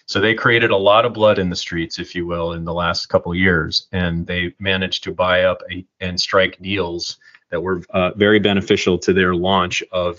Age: 30-49